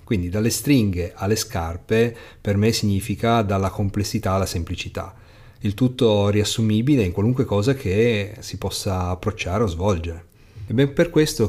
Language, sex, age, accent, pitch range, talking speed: Italian, male, 30-49, native, 95-110 Hz, 145 wpm